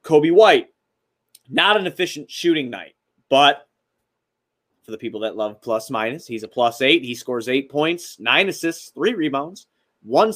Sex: male